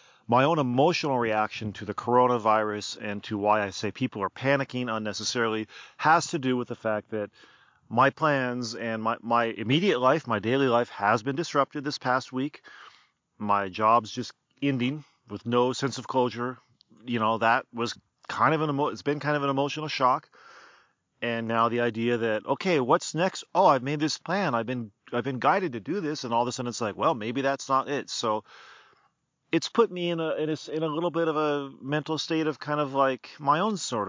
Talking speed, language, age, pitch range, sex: 210 wpm, English, 40-59, 115-150 Hz, male